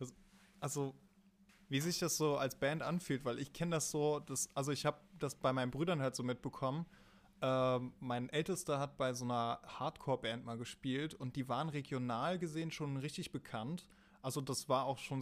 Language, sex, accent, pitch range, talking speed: German, male, German, 125-150 Hz, 185 wpm